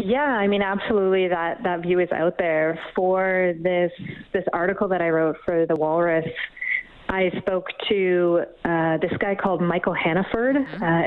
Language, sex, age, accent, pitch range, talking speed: English, female, 30-49, American, 165-205 Hz, 165 wpm